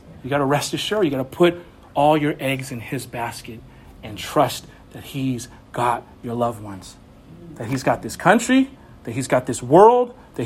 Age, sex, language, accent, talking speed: 40-59, male, English, American, 195 wpm